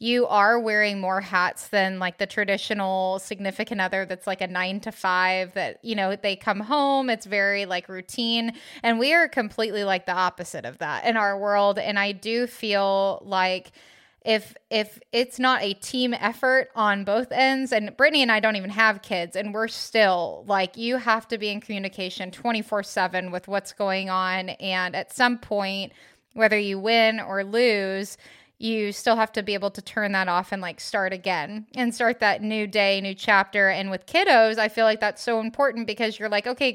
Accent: American